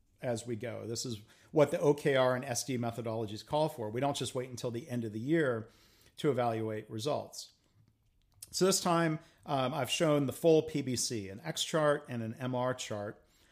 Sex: male